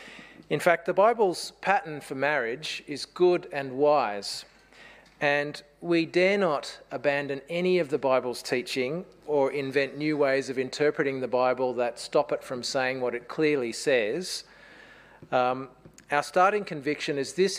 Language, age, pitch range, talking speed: English, 40-59, 130-160 Hz, 150 wpm